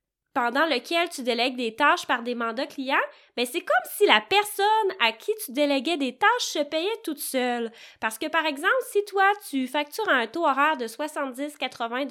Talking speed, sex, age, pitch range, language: 195 wpm, female, 20-39, 255-340 Hz, French